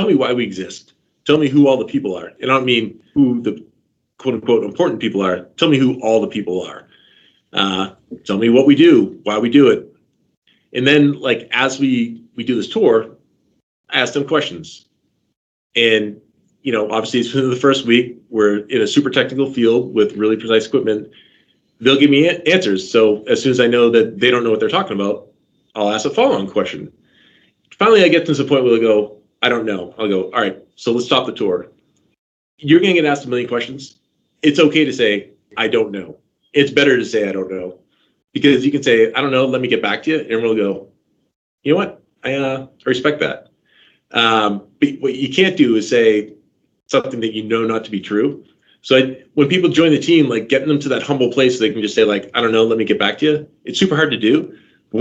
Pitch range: 110-145 Hz